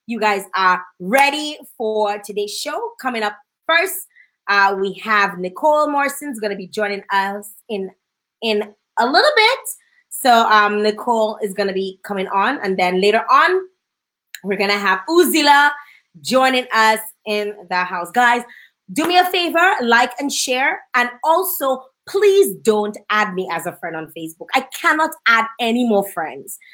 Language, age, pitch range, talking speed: English, 20-39, 195-275 Hz, 160 wpm